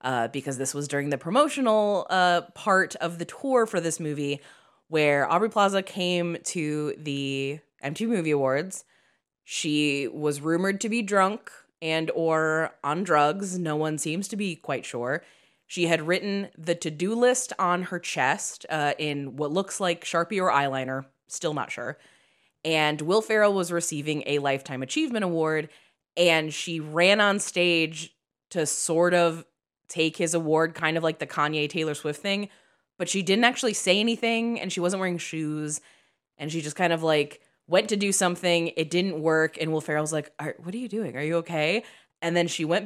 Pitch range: 150-185 Hz